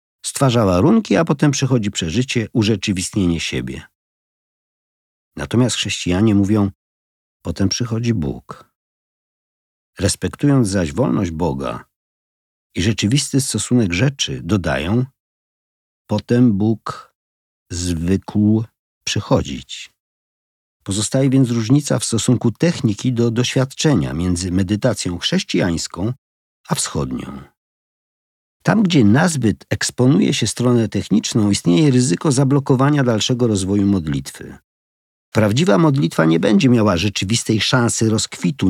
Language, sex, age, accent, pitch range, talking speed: Polish, male, 50-69, native, 95-125 Hz, 95 wpm